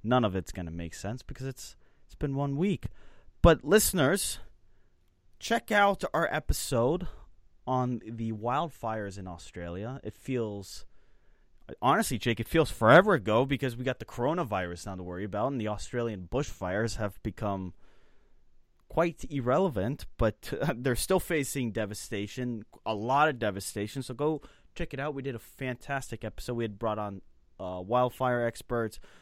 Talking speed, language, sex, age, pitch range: 155 wpm, English, male, 20-39, 100-135 Hz